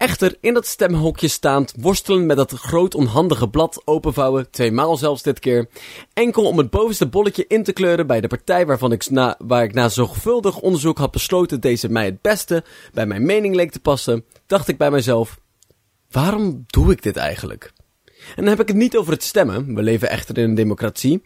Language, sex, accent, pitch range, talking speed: Dutch, male, Dutch, 125-180 Hz, 200 wpm